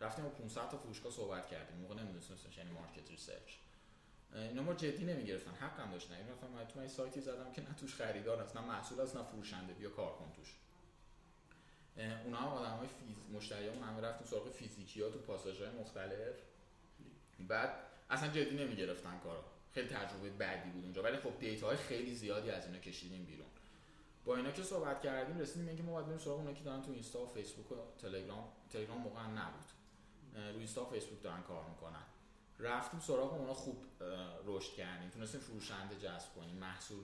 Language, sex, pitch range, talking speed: Persian, male, 105-140 Hz, 145 wpm